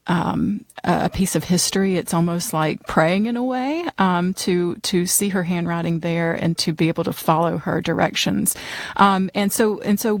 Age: 40-59